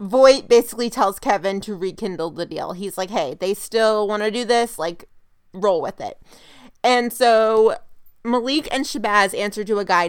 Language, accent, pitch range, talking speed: English, American, 195-250 Hz, 180 wpm